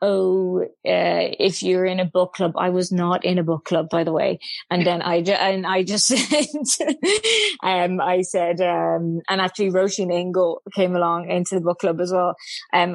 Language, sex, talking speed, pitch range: English, female, 195 wpm, 175-195 Hz